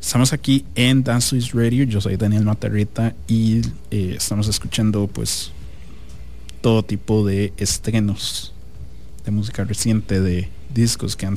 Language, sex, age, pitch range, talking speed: English, male, 30-49, 85-115 Hz, 135 wpm